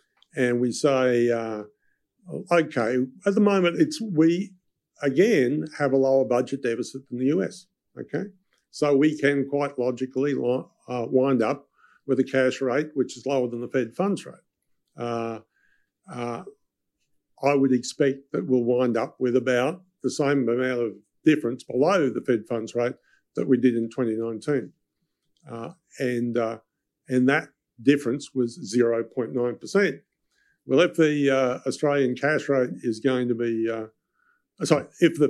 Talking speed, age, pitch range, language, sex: 150 wpm, 50-69, 115-140 Hz, English, male